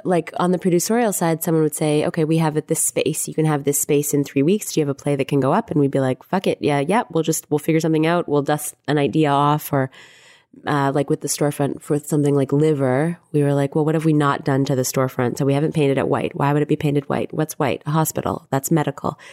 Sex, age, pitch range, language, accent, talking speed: female, 20-39, 130-155 Hz, English, American, 275 wpm